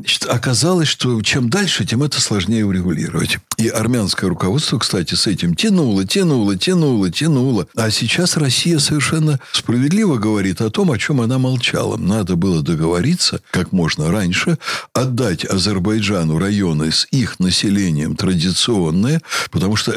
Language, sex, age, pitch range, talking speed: Russian, male, 60-79, 95-140 Hz, 135 wpm